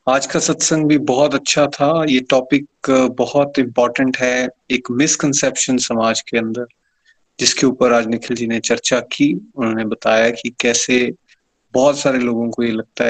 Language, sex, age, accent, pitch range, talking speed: Hindi, male, 30-49, native, 120-150 Hz, 160 wpm